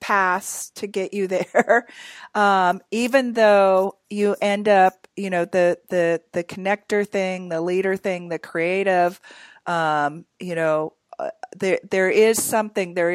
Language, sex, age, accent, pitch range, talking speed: English, female, 40-59, American, 165-195 Hz, 145 wpm